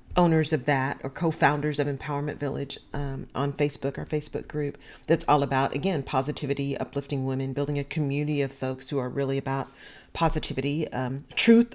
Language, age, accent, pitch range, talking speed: English, 40-59, American, 135-170 Hz, 170 wpm